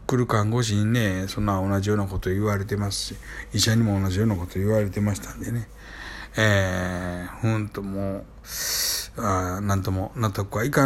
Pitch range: 105-135 Hz